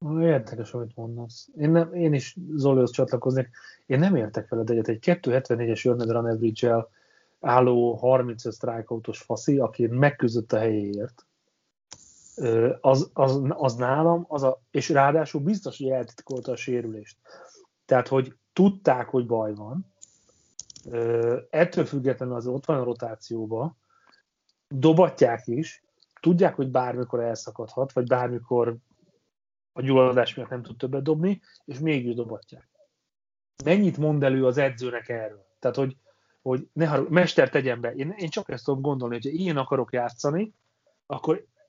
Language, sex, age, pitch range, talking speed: Hungarian, male, 30-49, 120-155 Hz, 140 wpm